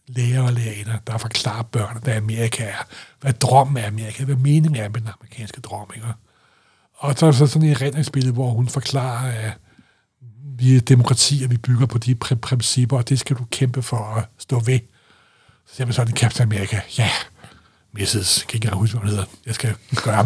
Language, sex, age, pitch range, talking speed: Danish, male, 60-79, 115-140 Hz, 190 wpm